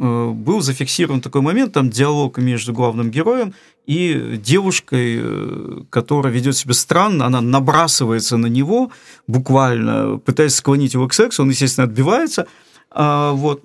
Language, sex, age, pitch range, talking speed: English, male, 40-59, 130-175 Hz, 130 wpm